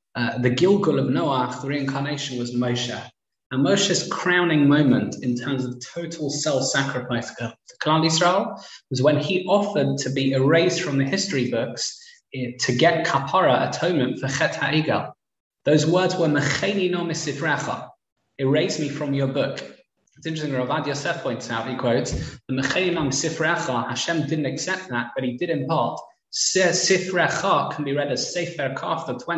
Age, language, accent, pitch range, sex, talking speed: 20-39, English, British, 130-165 Hz, male, 160 wpm